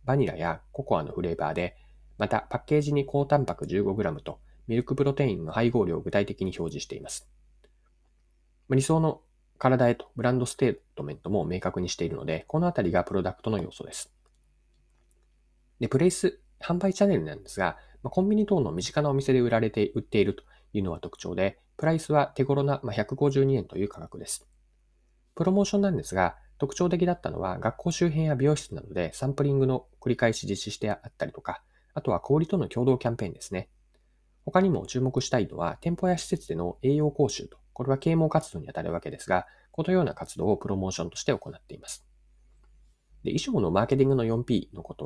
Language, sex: Japanese, male